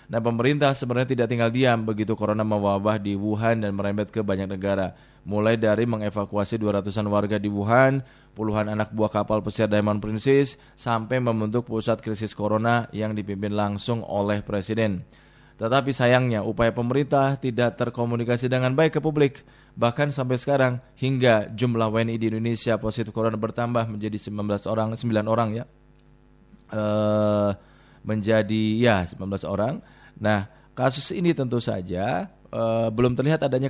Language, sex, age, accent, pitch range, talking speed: Indonesian, male, 20-39, native, 105-125 Hz, 145 wpm